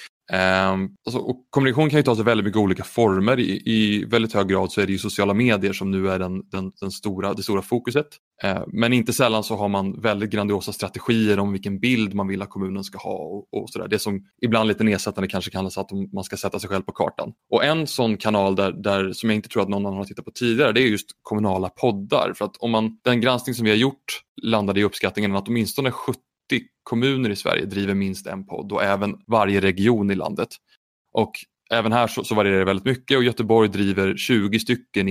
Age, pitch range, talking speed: 20-39, 95-120 Hz, 230 wpm